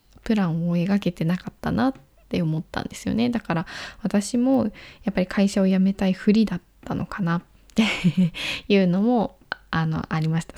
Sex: female